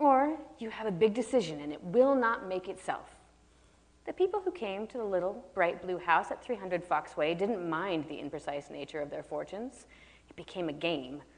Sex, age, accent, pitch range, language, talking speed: female, 30-49, American, 155-220 Hz, English, 195 wpm